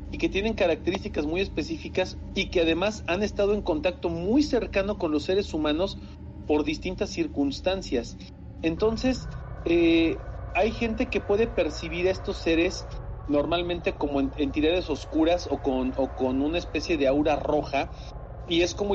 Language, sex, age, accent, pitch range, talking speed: Spanish, male, 40-59, Mexican, 110-180 Hz, 155 wpm